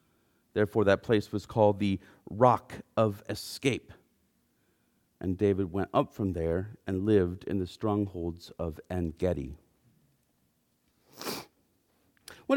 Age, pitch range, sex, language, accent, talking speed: 40-59, 110-160 Hz, male, English, American, 115 wpm